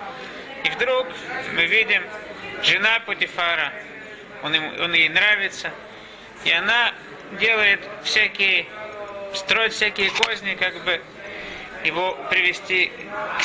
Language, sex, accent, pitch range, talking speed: Russian, male, native, 190-230 Hz, 100 wpm